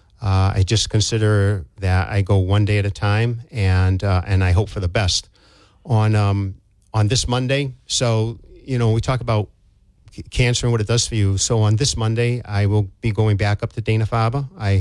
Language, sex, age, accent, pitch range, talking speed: English, male, 50-69, American, 100-120 Hz, 210 wpm